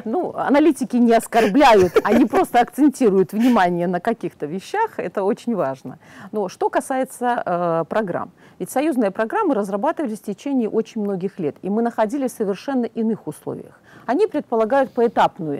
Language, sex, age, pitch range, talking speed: Russian, female, 50-69, 185-255 Hz, 145 wpm